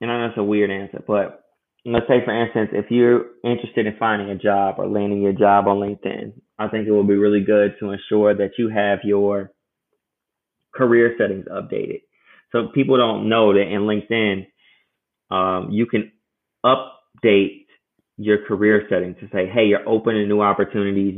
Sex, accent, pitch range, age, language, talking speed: male, American, 100-110 Hz, 20-39, English, 175 wpm